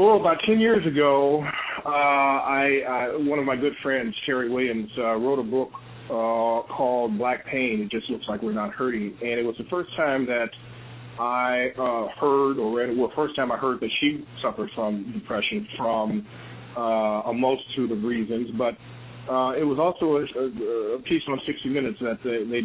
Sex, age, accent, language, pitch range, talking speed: male, 30-49, American, English, 115-140 Hz, 190 wpm